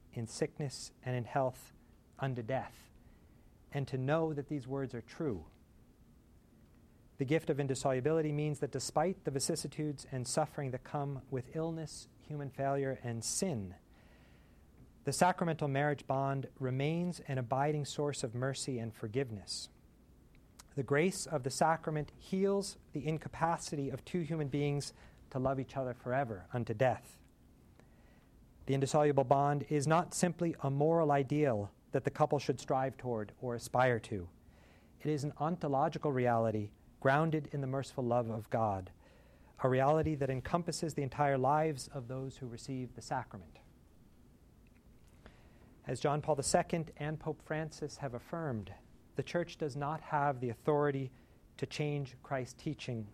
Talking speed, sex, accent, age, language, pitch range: 145 wpm, male, American, 40-59, English, 125-150 Hz